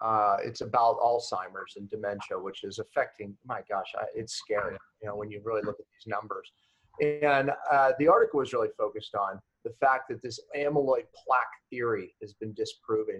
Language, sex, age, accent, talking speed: English, male, 40-59, American, 185 wpm